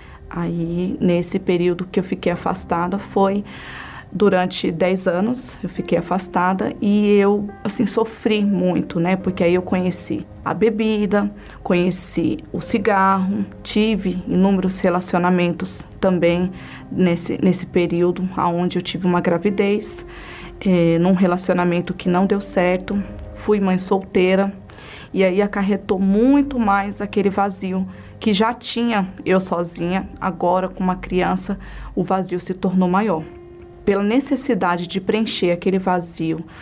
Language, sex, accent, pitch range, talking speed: Portuguese, female, Brazilian, 180-205 Hz, 130 wpm